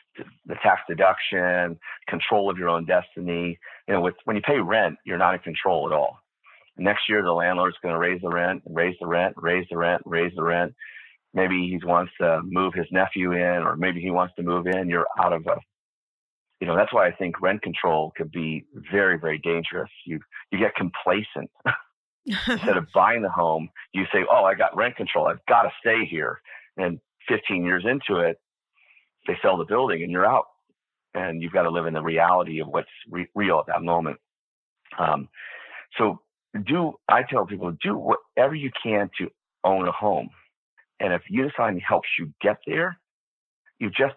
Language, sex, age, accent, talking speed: English, male, 40-59, American, 195 wpm